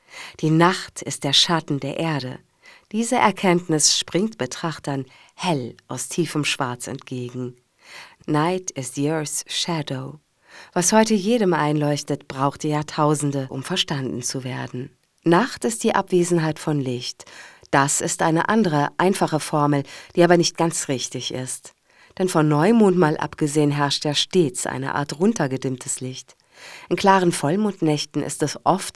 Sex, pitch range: female, 135-175 Hz